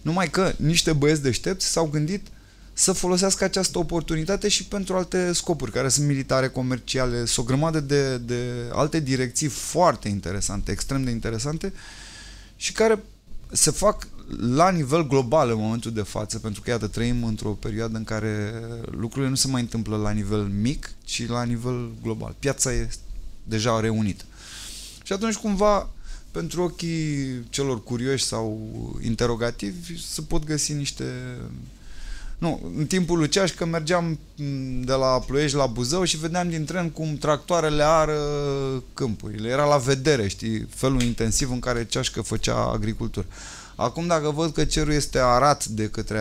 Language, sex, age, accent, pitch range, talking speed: Romanian, male, 20-39, native, 110-155 Hz, 150 wpm